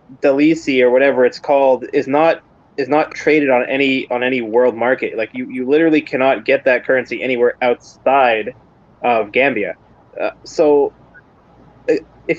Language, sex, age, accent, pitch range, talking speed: English, male, 20-39, American, 125-155 Hz, 150 wpm